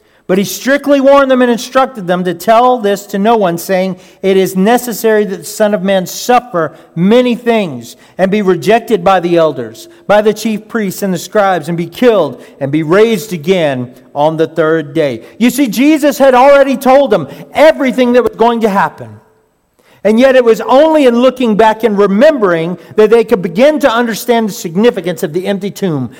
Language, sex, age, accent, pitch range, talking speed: English, male, 50-69, American, 180-235 Hz, 195 wpm